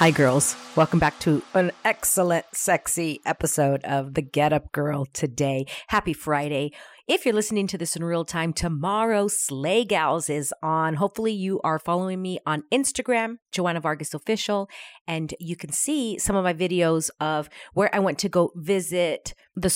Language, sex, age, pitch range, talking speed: English, female, 40-59, 160-220 Hz, 175 wpm